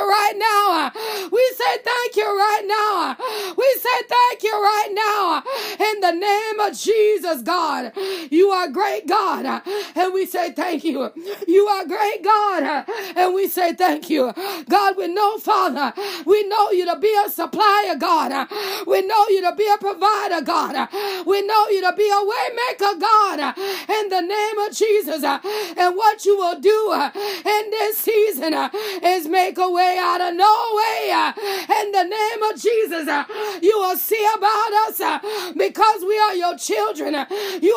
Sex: female